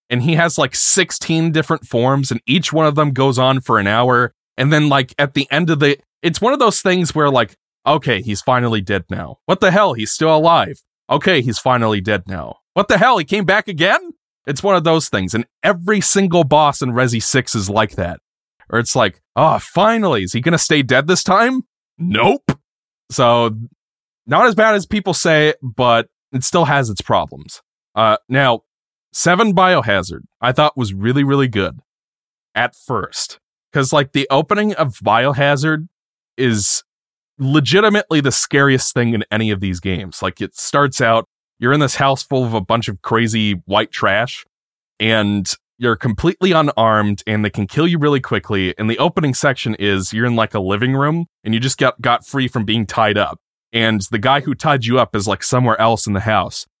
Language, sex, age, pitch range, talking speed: English, male, 20-39, 110-155 Hz, 195 wpm